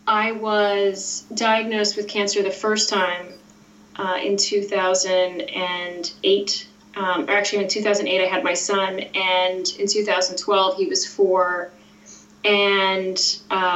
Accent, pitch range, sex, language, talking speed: American, 190-225 Hz, female, English, 120 wpm